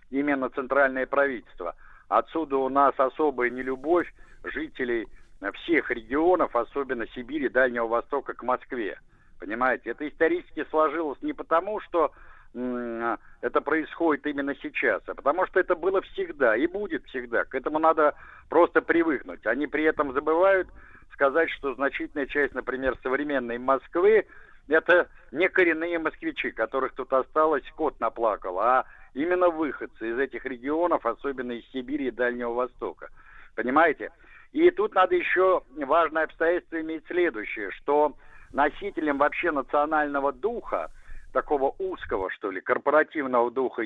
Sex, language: male, Russian